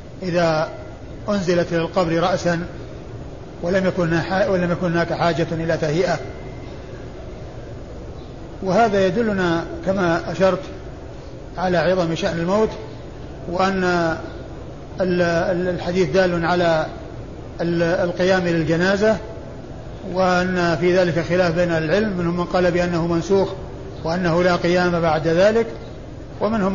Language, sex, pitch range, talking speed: Arabic, male, 165-185 Hz, 95 wpm